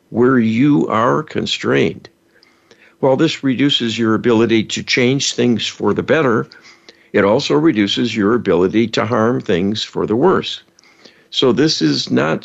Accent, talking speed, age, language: American, 145 wpm, 60-79, English